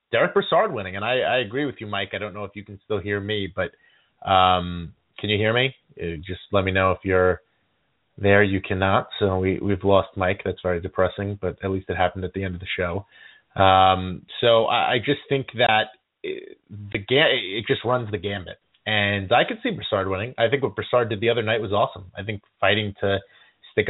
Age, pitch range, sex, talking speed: 30-49, 95-110 Hz, male, 220 wpm